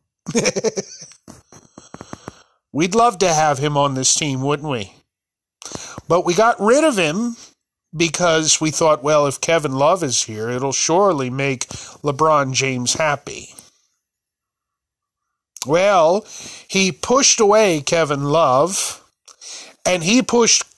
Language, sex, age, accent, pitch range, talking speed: English, male, 40-59, American, 145-185 Hz, 115 wpm